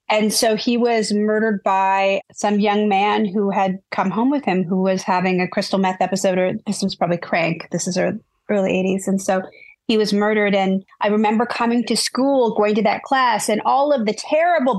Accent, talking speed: American, 210 wpm